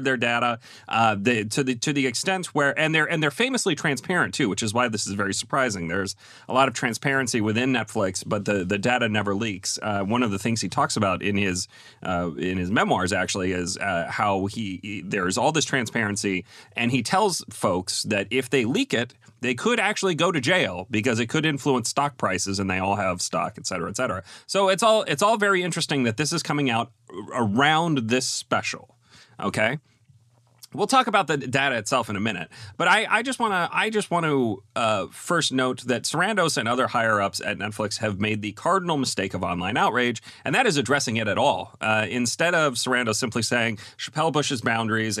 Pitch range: 105-145 Hz